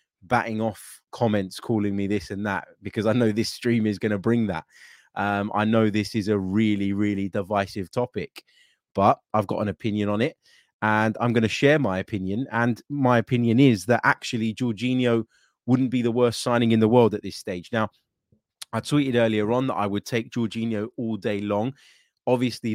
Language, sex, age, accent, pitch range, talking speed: English, male, 20-39, British, 105-115 Hz, 195 wpm